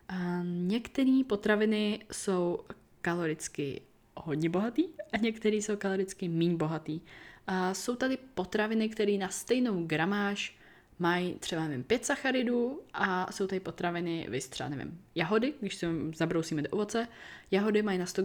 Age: 20-39